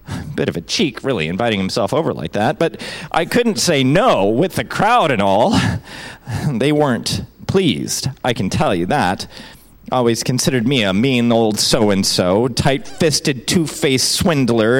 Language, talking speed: English, 155 wpm